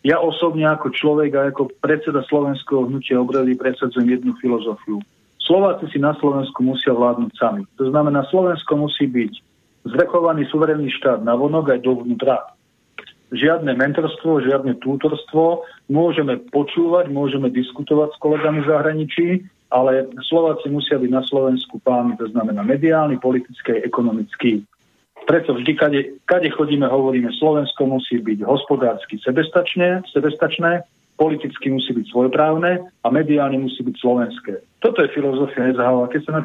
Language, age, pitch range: Slovak, 40-59, 125-150 Hz